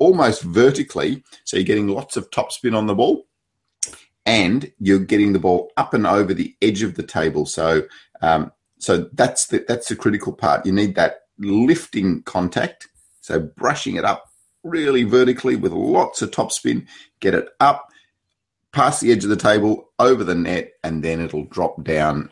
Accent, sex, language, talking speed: Australian, male, English, 175 wpm